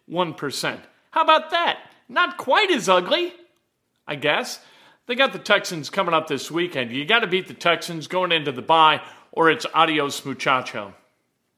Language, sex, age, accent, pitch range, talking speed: English, male, 50-69, American, 150-205 Hz, 165 wpm